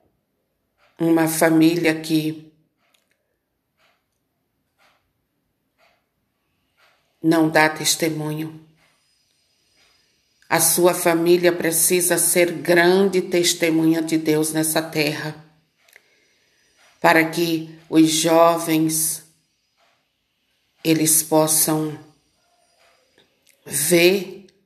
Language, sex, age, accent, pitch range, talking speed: Portuguese, female, 50-69, Brazilian, 155-175 Hz, 55 wpm